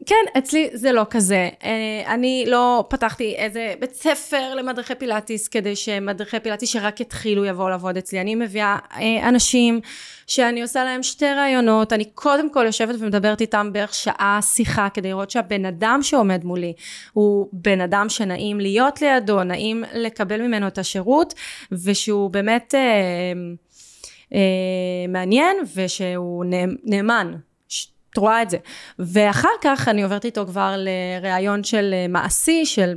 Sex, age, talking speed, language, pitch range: female, 20-39, 140 wpm, Hebrew, 195-250 Hz